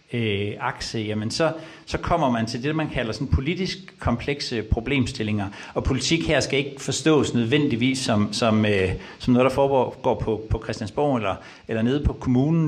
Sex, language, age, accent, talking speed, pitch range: male, Danish, 60-79, native, 175 wpm, 105-140 Hz